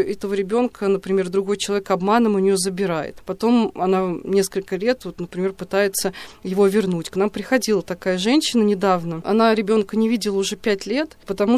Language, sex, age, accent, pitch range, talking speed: Russian, female, 20-39, native, 190-225 Hz, 165 wpm